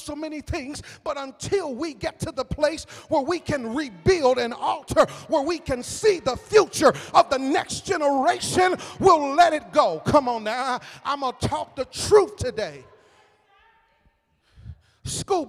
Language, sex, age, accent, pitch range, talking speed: English, male, 40-59, American, 240-315 Hz, 160 wpm